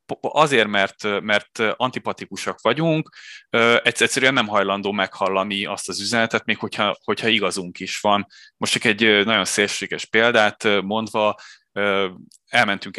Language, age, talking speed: Hungarian, 20-39, 120 wpm